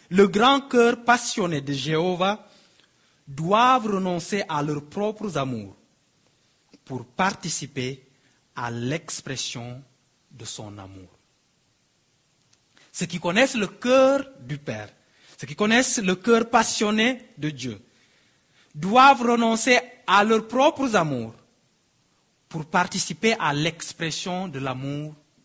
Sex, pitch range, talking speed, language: male, 130-195 Hz, 110 wpm, French